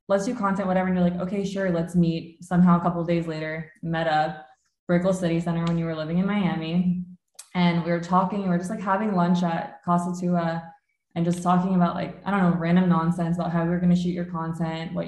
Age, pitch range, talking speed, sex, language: 20-39, 165-185 Hz, 245 wpm, female, English